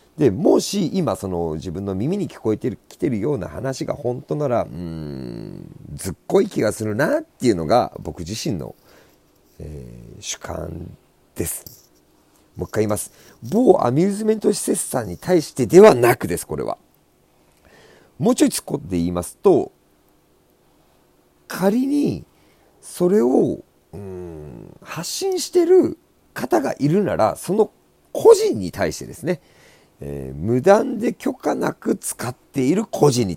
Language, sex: Japanese, male